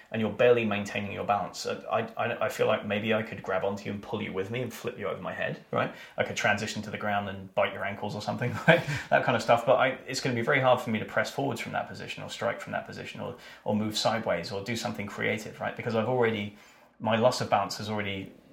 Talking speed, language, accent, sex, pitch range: 275 wpm, English, British, male, 100-115 Hz